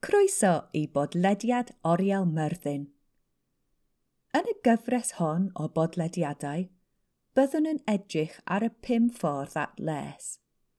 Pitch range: 155-245 Hz